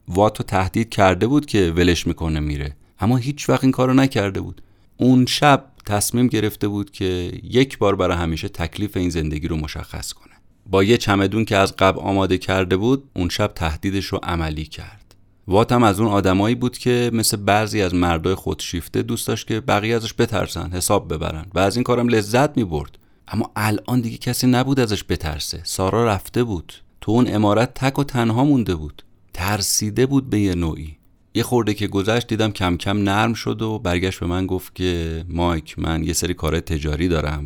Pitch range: 85-115 Hz